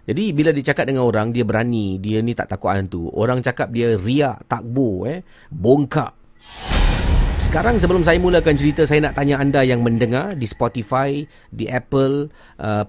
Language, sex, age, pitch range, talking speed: Malay, male, 40-59, 105-140 Hz, 165 wpm